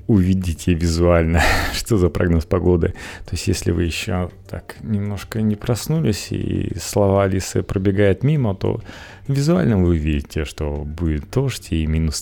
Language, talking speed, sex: Russian, 140 wpm, male